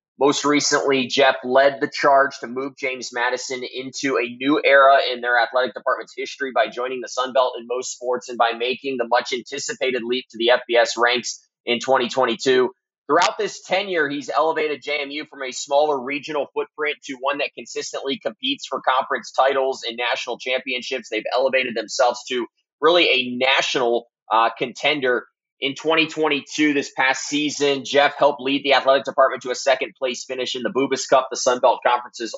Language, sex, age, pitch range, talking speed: English, male, 20-39, 125-150 Hz, 170 wpm